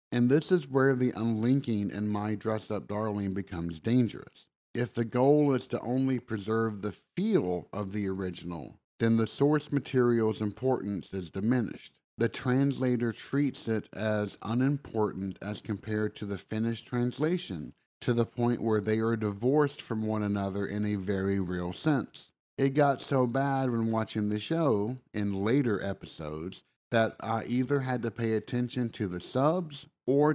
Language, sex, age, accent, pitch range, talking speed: English, male, 50-69, American, 105-135 Hz, 160 wpm